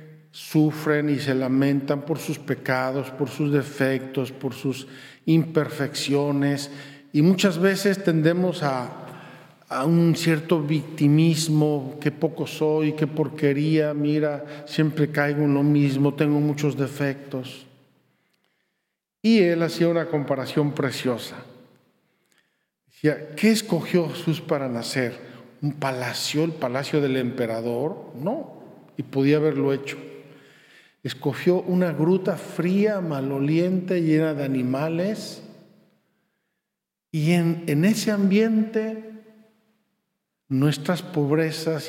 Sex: male